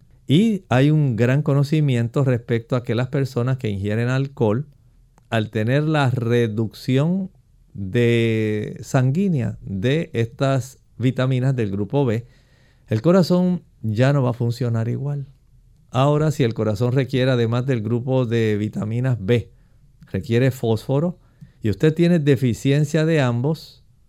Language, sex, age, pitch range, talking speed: Spanish, male, 50-69, 120-150 Hz, 130 wpm